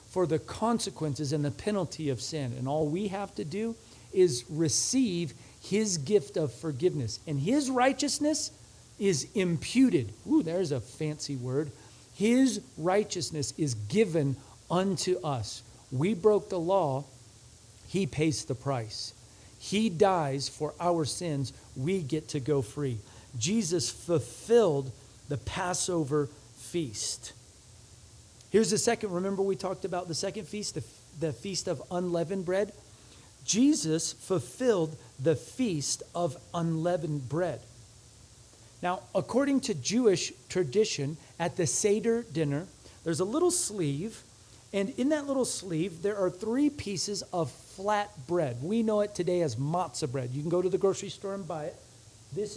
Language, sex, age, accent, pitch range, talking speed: English, male, 40-59, American, 135-195 Hz, 145 wpm